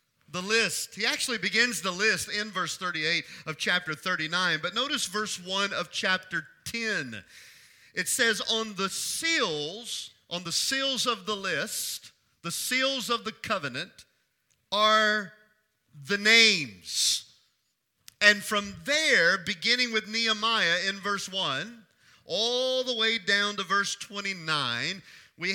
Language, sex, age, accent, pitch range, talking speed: English, male, 40-59, American, 170-215 Hz, 130 wpm